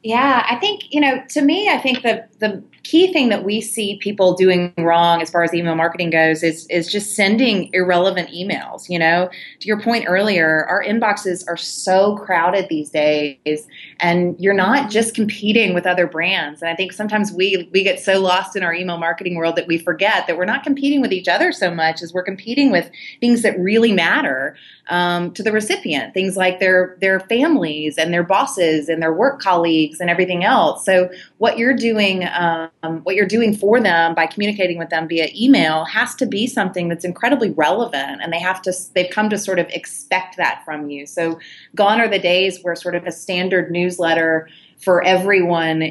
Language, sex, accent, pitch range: English, female, American, 165-200 Hz